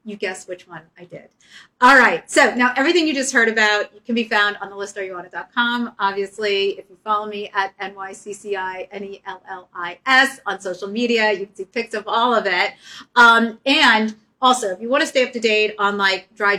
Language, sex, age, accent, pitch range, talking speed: English, female, 40-59, American, 190-230 Hz, 230 wpm